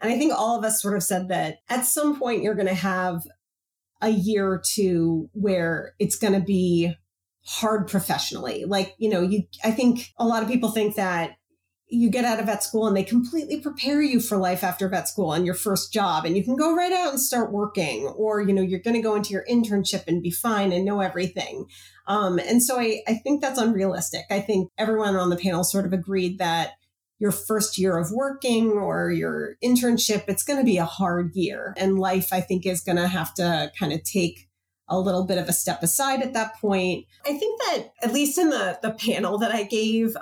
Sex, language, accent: female, English, American